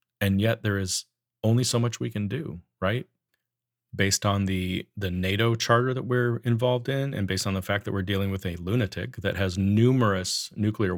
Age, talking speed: 30-49, 195 wpm